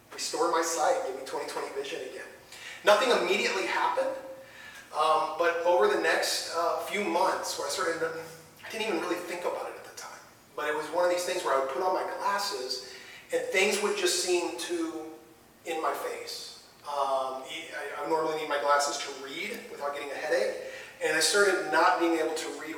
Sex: male